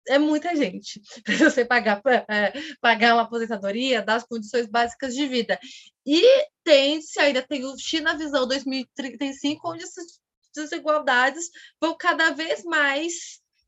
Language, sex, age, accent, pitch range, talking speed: Portuguese, female, 20-39, Brazilian, 230-300 Hz, 135 wpm